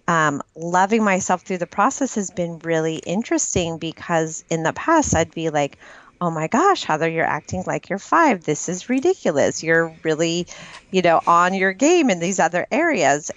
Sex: female